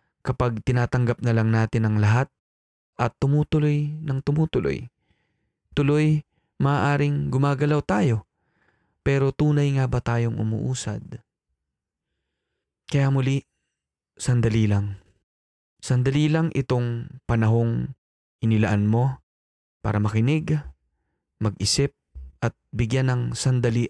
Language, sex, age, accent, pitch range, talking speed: Filipino, male, 20-39, native, 105-140 Hz, 95 wpm